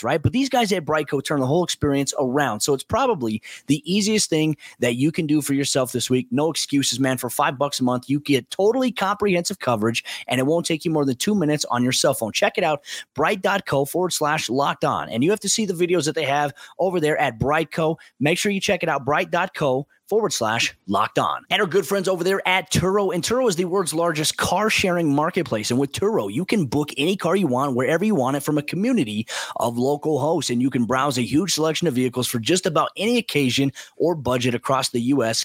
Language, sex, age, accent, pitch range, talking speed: English, male, 30-49, American, 135-180 Hz, 235 wpm